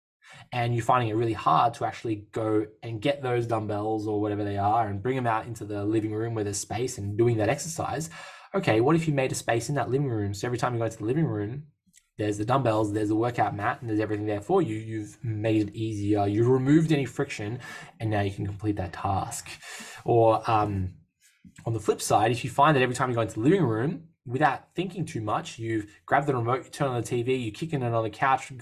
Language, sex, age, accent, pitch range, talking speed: English, male, 10-29, Australian, 110-140 Hz, 245 wpm